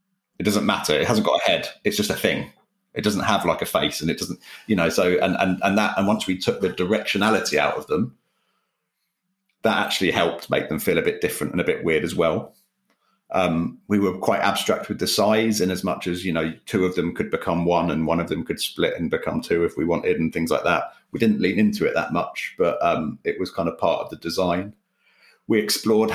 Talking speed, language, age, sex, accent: 245 wpm, English, 40-59, male, British